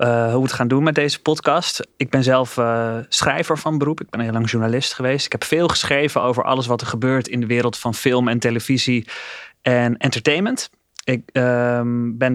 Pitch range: 115-130 Hz